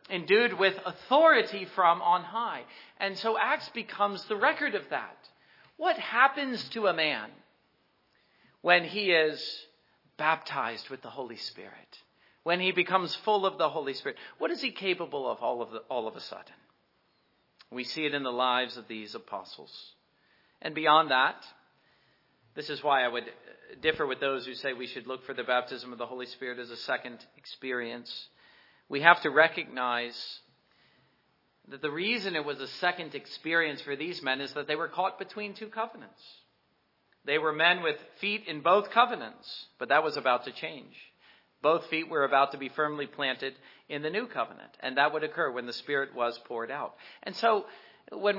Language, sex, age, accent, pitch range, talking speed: English, male, 40-59, American, 140-205 Hz, 180 wpm